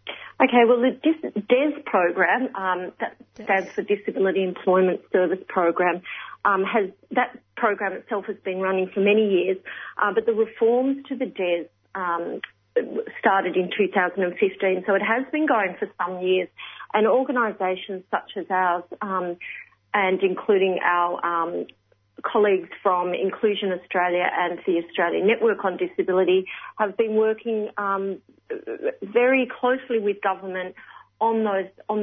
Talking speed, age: 140 wpm, 40-59